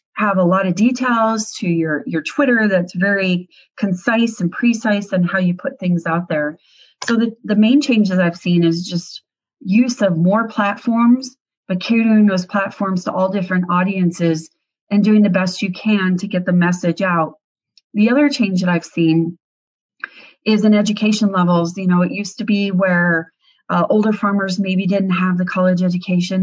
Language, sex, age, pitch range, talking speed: English, female, 30-49, 180-215 Hz, 180 wpm